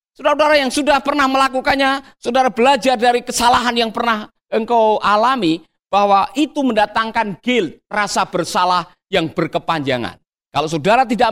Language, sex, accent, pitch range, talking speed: Indonesian, male, native, 170-250 Hz, 125 wpm